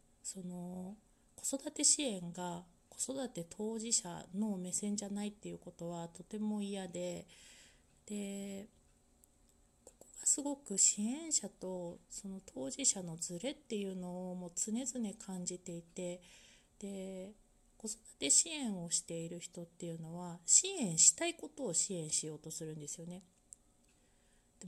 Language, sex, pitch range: Japanese, female, 175-225 Hz